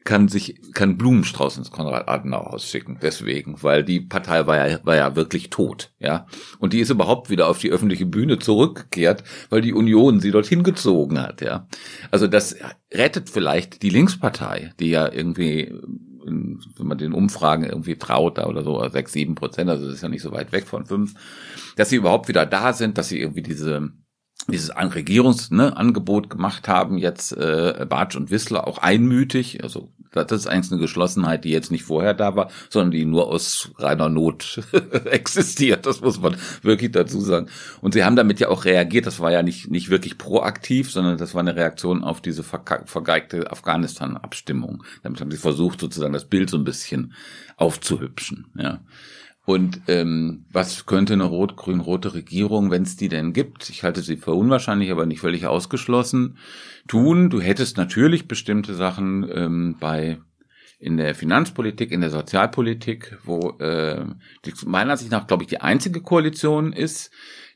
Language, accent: German, German